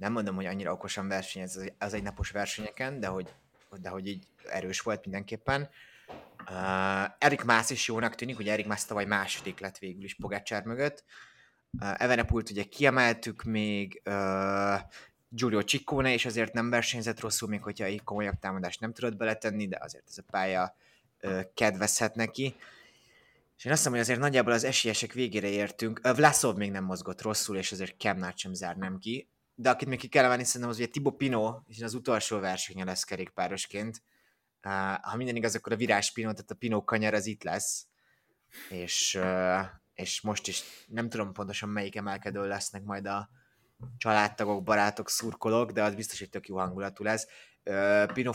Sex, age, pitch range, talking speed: male, 20-39, 95-115 Hz, 170 wpm